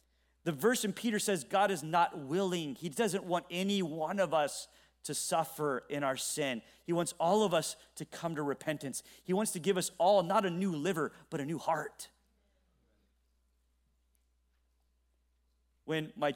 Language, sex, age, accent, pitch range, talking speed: English, male, 30-49, American, 155-220 Hz, 170 wpm